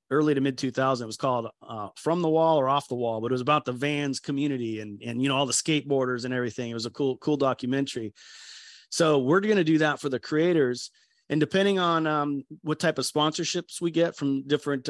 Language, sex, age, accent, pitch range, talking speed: English, male, 30-49, American, 125-145 Hz, 235 wpm